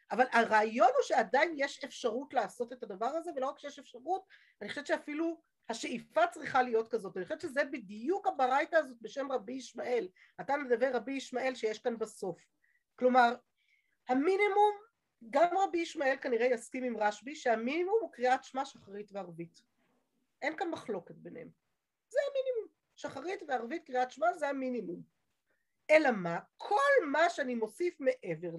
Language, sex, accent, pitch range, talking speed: Hebrew, female, native, 230-320 Hz, 150 wpm